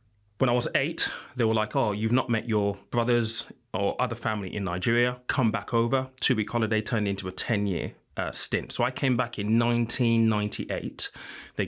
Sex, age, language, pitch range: male, 20-39, English, 105-120 Hz